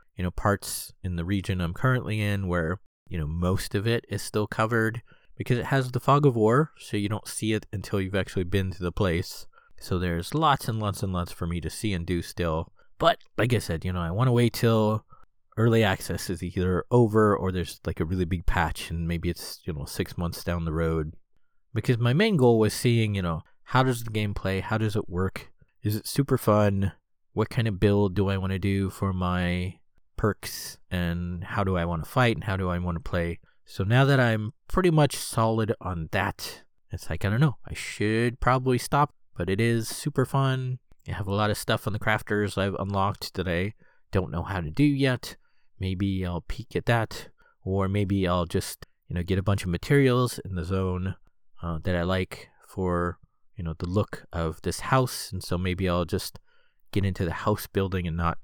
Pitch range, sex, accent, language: 90-110 Hz, male, American, English